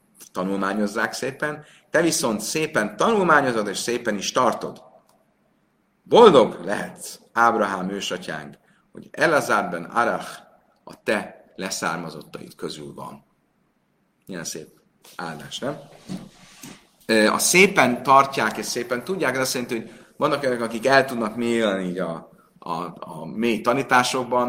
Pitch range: 105-130 Hz